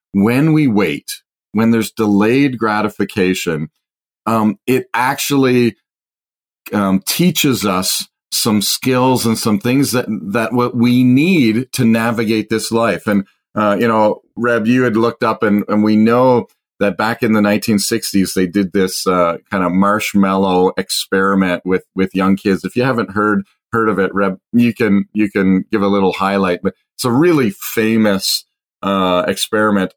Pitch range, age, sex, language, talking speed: 100-120 Hz, 40-59, male, English, 160 wpm